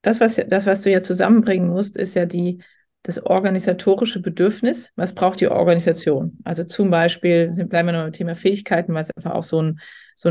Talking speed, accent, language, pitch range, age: 200 wpm, German, German, 165-200 Hz, 30-49